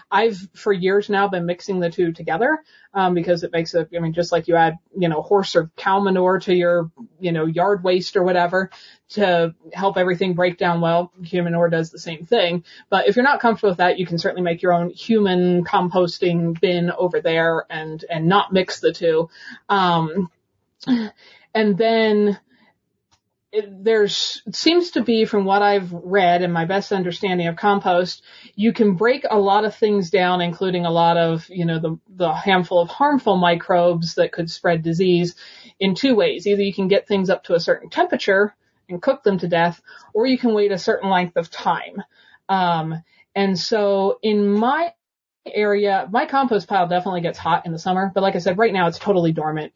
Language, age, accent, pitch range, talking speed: English, 30-49, American, 170-205 Hz, 195 wpm